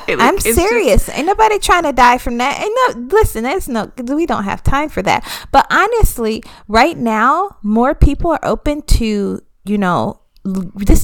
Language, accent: English, American